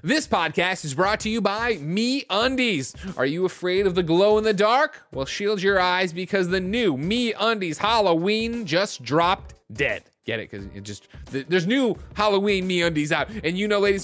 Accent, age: American, 30-49